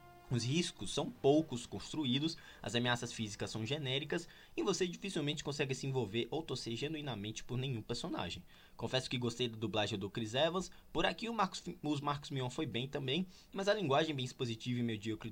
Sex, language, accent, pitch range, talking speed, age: male, Portuguese, Brazilian, 115-145 Hz, 175 wpm, 20-39